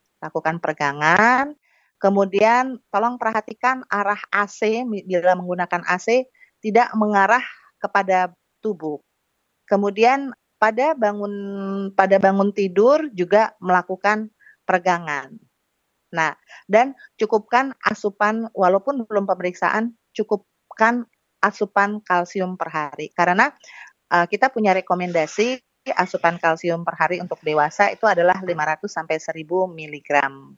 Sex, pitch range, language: female, 165-220 Hz, Indonesian